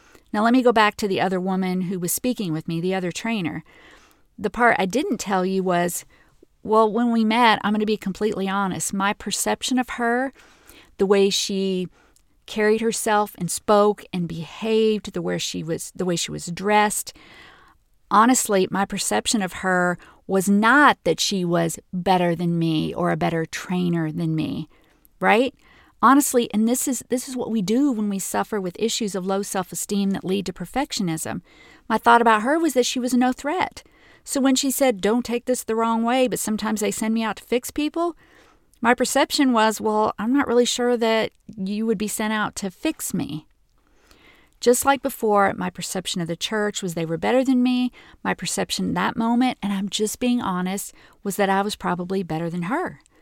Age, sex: 40-59, female